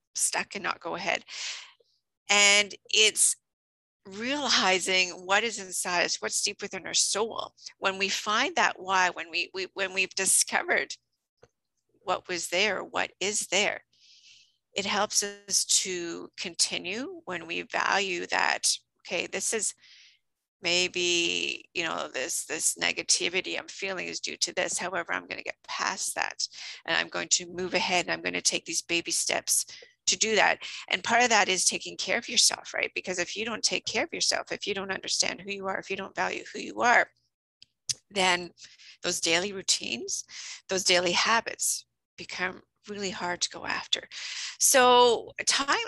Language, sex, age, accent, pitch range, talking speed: English, female, 40-59, American, 180-220 Hz, 170 wpm